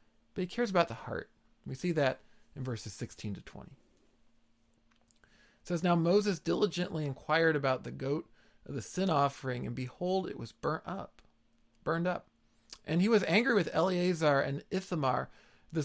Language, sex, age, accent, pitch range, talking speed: English, male, 40-59, American, 140-185 Hz, 165 wpm